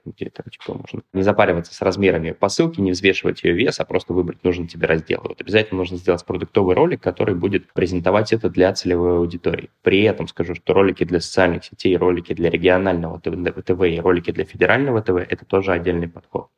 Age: 20-39